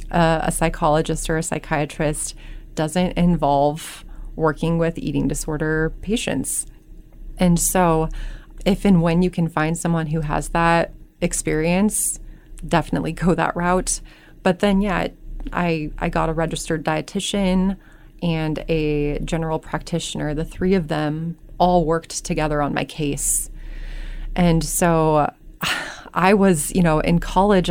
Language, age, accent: English, 30-49, American